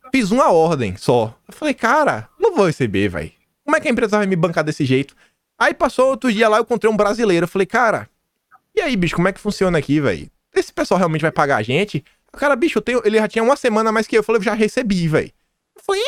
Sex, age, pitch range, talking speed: male, 20-39, 155-245 Hz, 260 wpm